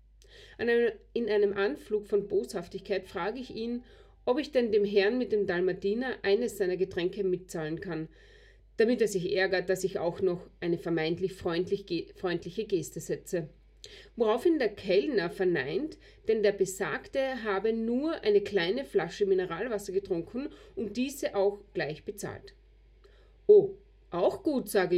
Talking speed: 145 wpm